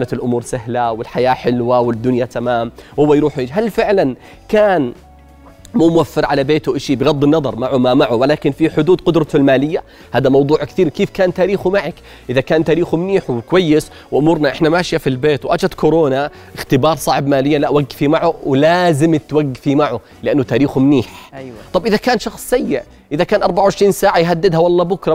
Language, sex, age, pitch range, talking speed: Arabic, male, 30-49, 140-180 Hz, 165 wpm